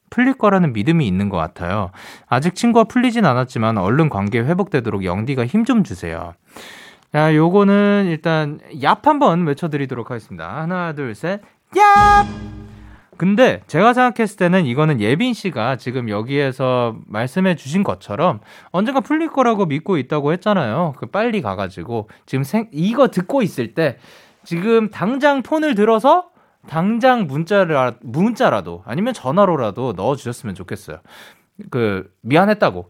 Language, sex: Korean, male